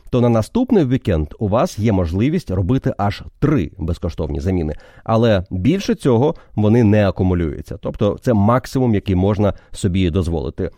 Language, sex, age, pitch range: Ukrainian, male, 30-49, 95-135 Hz